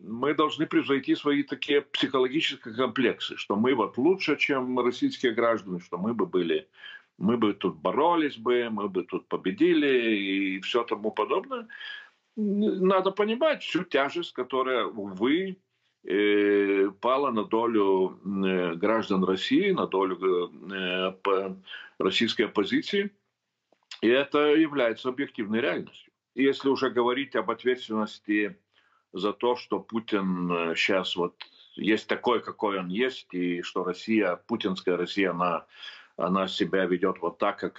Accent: native